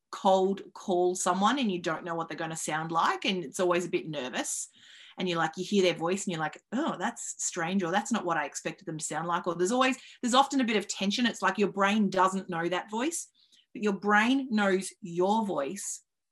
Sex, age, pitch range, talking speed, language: female, 30-49, 175-220 Hz, 240 wpm, English